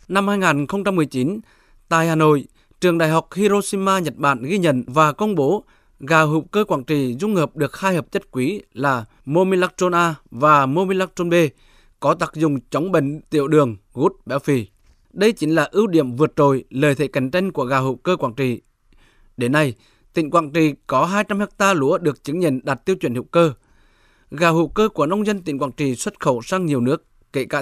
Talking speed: 205 wpm